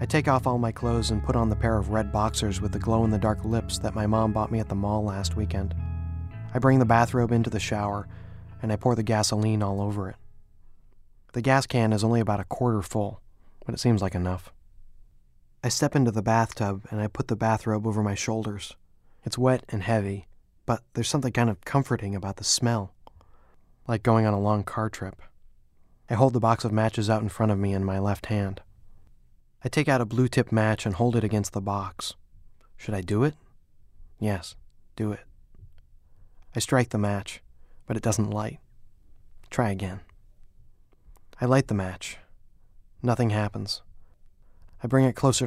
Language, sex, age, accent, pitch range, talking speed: English, male, 20-39, American, 100-115 Hz, 190 wpm